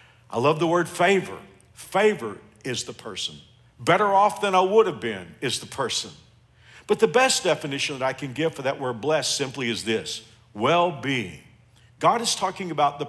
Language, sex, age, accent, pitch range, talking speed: English, male, 50-69, American, 115-155 Hz, 185 wpm